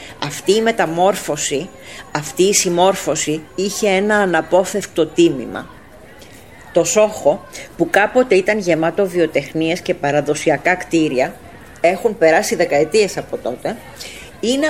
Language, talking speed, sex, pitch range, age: Greek, 105 wpm, female, 170-215 Hz, 40-59